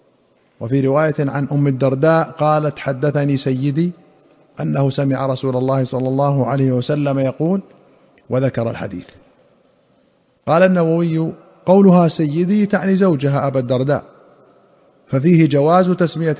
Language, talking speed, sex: Arabic, 110 wpm, male